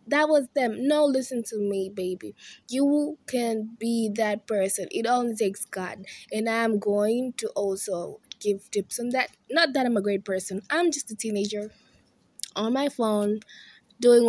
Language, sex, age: English, female, 20-39